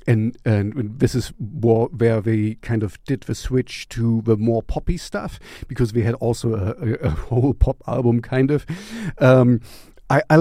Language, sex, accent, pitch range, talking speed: English, male, German, 115-145 Hz, 180 wpm